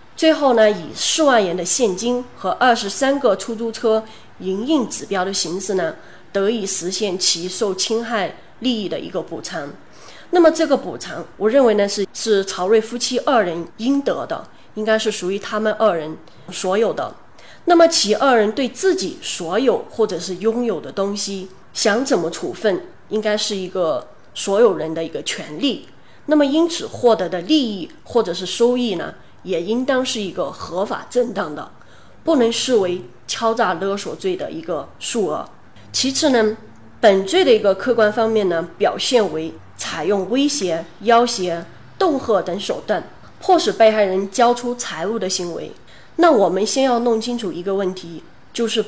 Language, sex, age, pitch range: Chinese, female, 20-39, 190-250 Hz